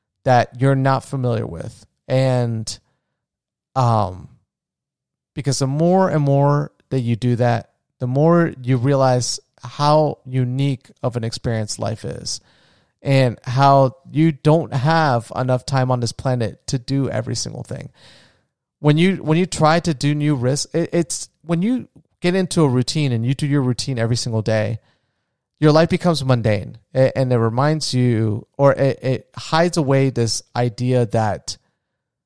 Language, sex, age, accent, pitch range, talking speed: English, male, 30-49, American, 120-150 Hz, 155 wpm